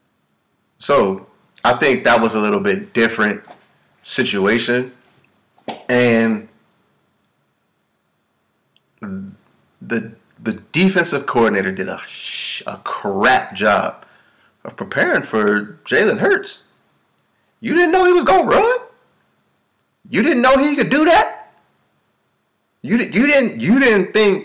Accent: American